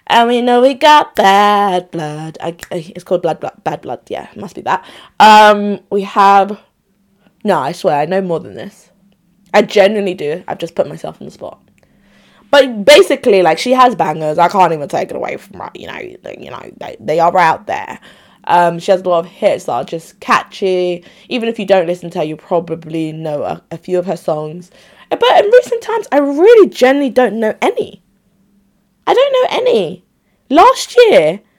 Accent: British